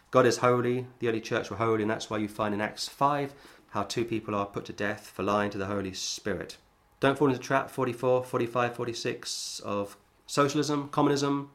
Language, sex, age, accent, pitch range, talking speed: English, male, 30-49, British, 100-125 Hz, 210 wpm